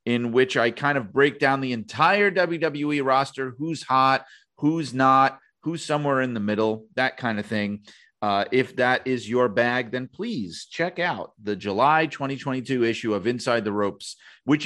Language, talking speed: English, 175 wpm